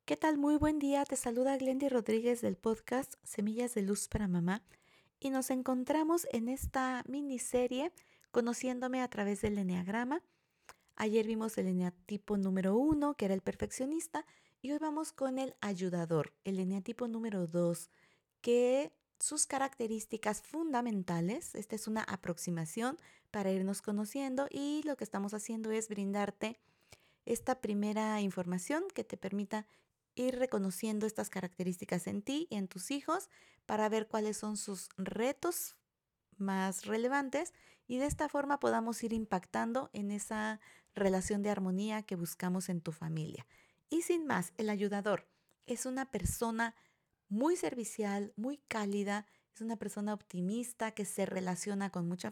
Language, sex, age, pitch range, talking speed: Spanish, female, 40-59, 195-255 Hz, 145 wpm